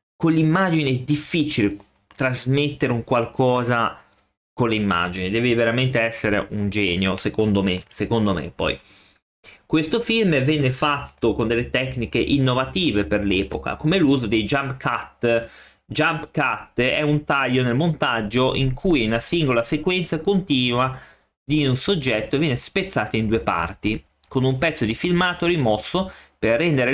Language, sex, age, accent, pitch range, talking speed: Italian, male, 30-49, native, 105-145 Hz, 145 wpm